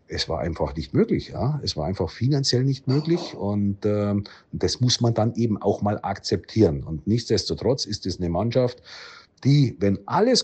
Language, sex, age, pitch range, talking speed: German, male, 50-69, 100-120 Hz, 180 wpm